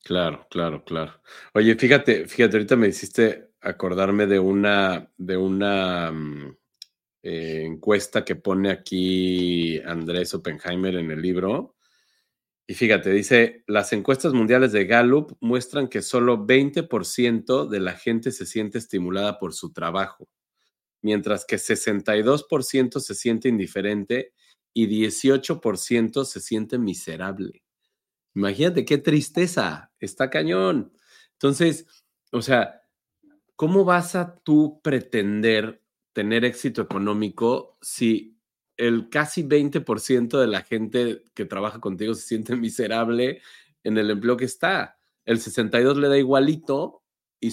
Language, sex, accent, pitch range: Spanish, male, Mexican, 95-130 Hz